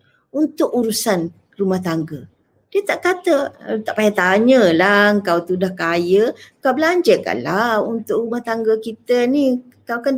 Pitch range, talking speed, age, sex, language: 180-250 Hz, 135 wpm, 50-69, female, Malay